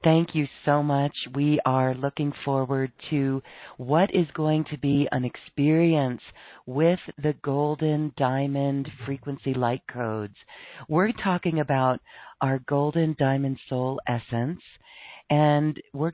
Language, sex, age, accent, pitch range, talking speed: English, female, 40-59, American, 125-155 Hz, 125 wpm